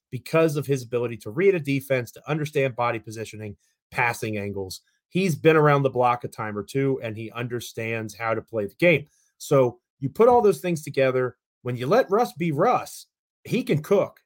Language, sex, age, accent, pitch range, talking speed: English, male, 30-49, American, 120-165 Hz, 200 wpm